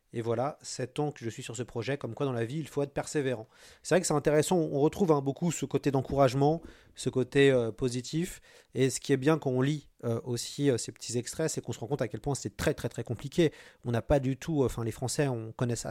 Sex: male